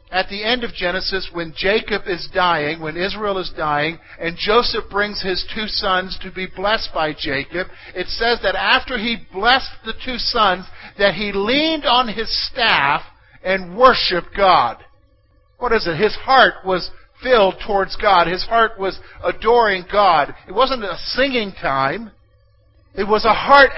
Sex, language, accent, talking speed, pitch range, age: male, English, American, 165 wpm, 160-210 Hz, 50-69